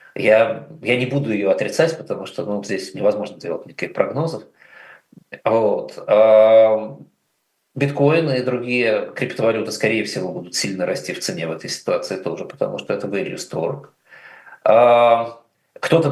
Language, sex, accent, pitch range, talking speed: Russian, male, native, 110-140 Hz, 140 wpm